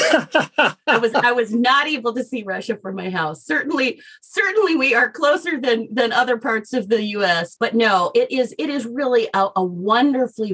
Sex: female